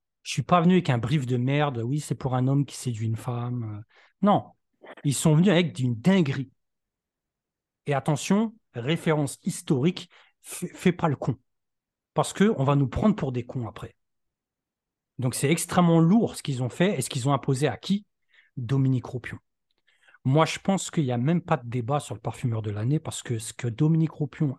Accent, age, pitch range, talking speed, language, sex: French, 40-59, 120-150 Hz, 205 wpm, French, male